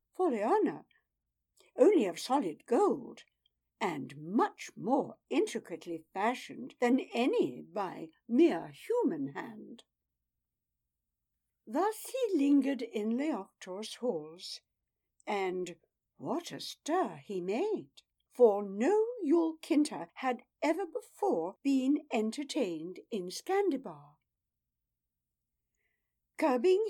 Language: English